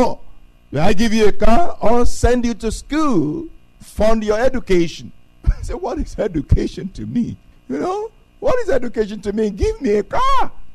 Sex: male